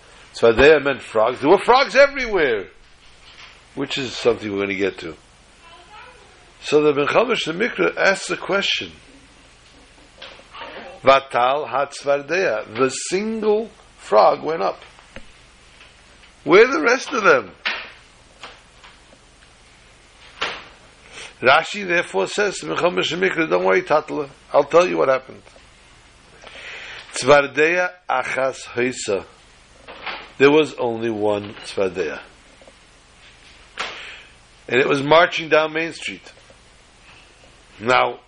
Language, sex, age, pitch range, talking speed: English, male, 60-79, 120-180 Hz, 105 wpm